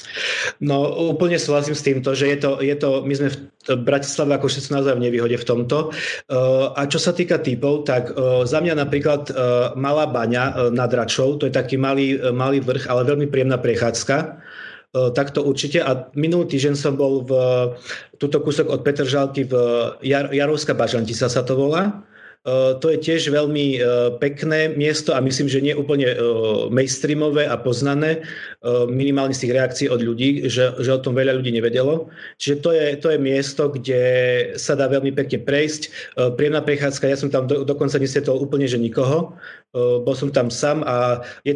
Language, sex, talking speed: Slovak, male, 180 wpm